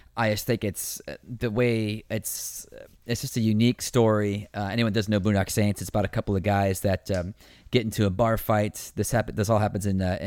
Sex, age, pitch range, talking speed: male, 30-49, 95-110 Hz, 220 wpm